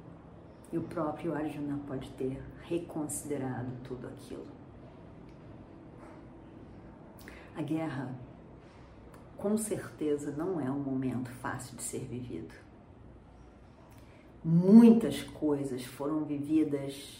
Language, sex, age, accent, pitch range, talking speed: Portuguese, female, 40-59, Brazilian, 125-170 Hz, 85 wpm